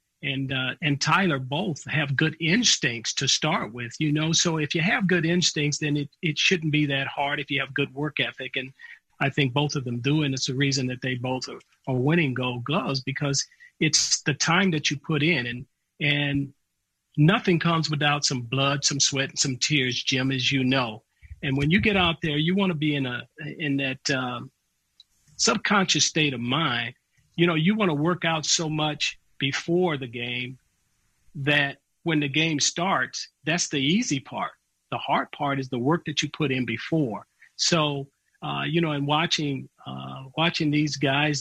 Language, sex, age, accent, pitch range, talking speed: English, male, 40-59, American, 135-160 Hz, 195 wpm